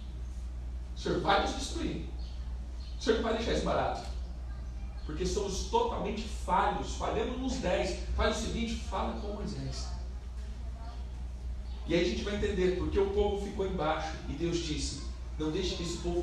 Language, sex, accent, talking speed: Portuguese, male, Brazilian, 165 wpm